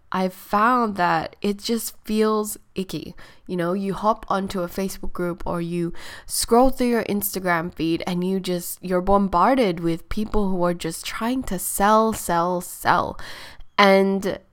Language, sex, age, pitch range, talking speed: English, female, 10-29, 175-215 Hz, 155 wpm